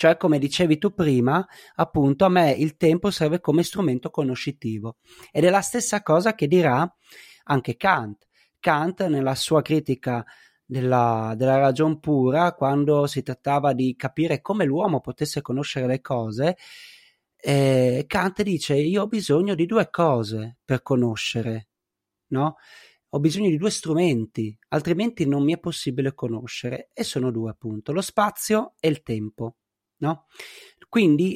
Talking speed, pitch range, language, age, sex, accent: 145 wpm, 130-180 Hz, Italian, 30-49, male, native